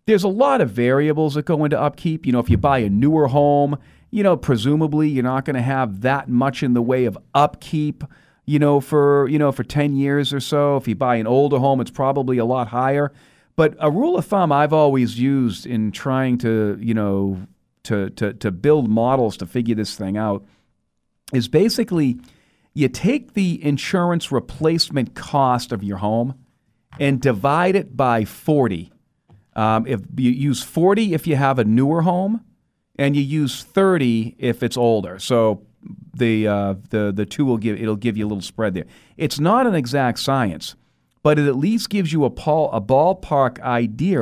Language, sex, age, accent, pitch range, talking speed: English, male, 40-59, American, 115-155 Hz, 190 wpm